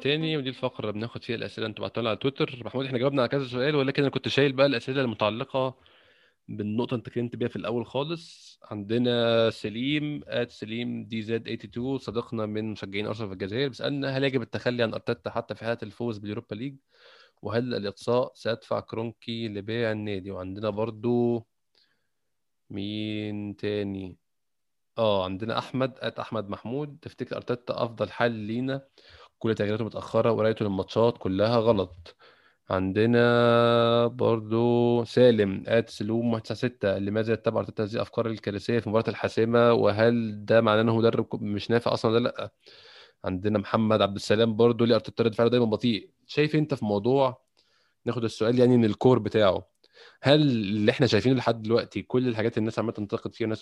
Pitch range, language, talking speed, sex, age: 105-120 Hz, Arabic, 160 wpm, male, 20-39